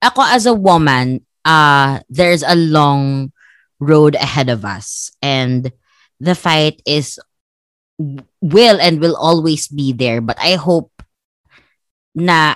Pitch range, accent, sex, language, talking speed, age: 135-175 Hz, Filipino, female, English, 125 wpm, 20-39